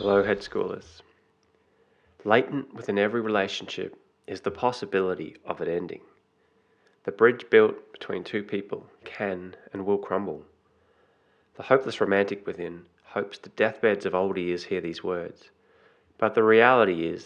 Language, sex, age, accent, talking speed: English, male, 20-39, Australian, 140 wpm